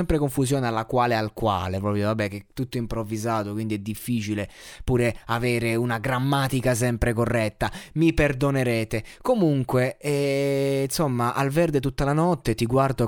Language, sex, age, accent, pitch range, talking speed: Italian, male, 20-39, native, 115-145 Hz, 150 wpm